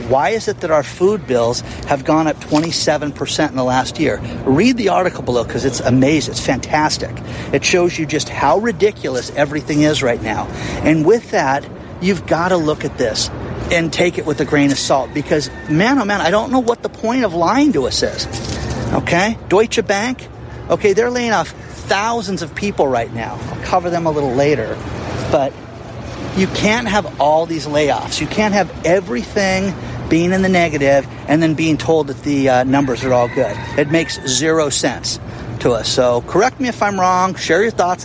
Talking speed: 195 wpm